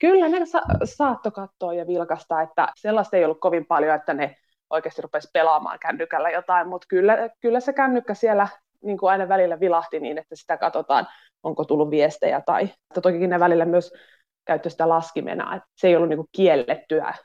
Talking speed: 180 wpm